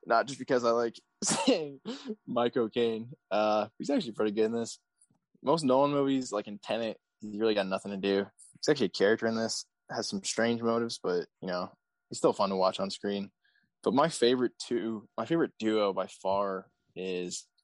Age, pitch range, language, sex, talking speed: 20-39, 100-115 Hz, English, male, 190 wpm